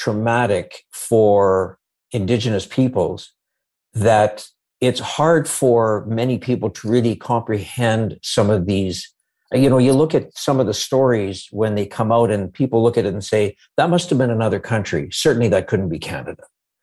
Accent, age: American, 60-79